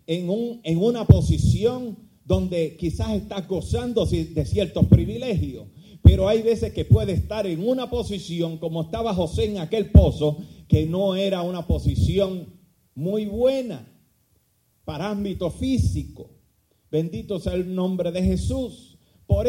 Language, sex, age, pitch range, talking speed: Spanish, male, 40-59, 160-220 Hz, 130 wpm